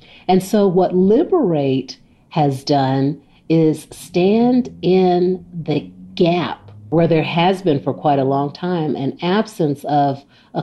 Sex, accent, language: female, American, English